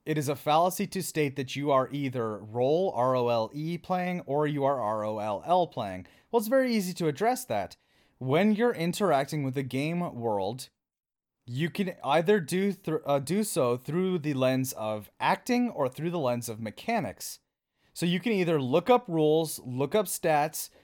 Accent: American